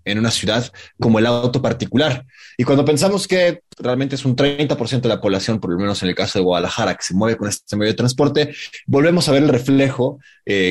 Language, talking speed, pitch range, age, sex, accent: Spanish, 225 wpm, 105-135 Hz, 20-39, male, Mexican